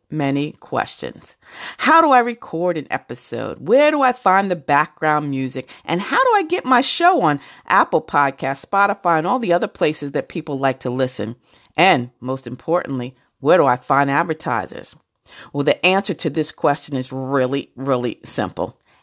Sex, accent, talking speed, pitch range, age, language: female, American, 170 wpm, 145-195 Hz, 40-59, English